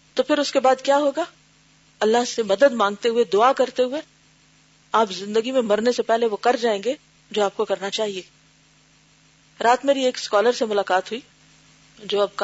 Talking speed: 140 wpm